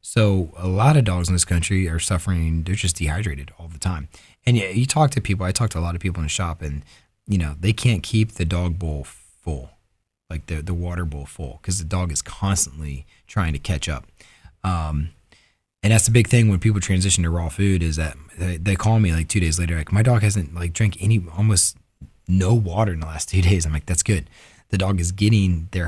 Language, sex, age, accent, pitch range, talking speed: English, male, 20-39, American, 85-105 Hz, 240 wpm